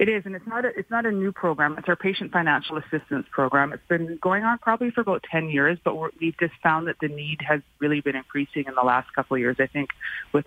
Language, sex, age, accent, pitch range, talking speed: English, female, 30-49, American, 135-160 Hz, 250 wpm